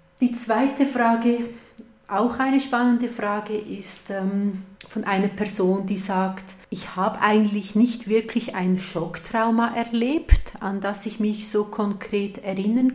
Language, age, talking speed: German, 40-59, 130 wpm